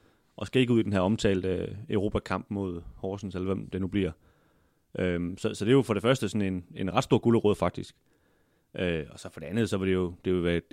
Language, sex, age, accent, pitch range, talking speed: Danish, male, 30-49, native, 95-110 Hz, 255 wpm